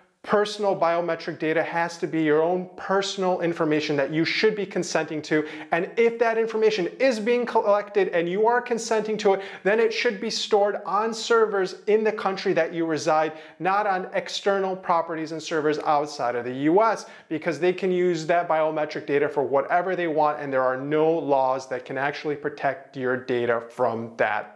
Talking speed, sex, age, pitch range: 185 wpm, male, 30-49, 150-195 Hz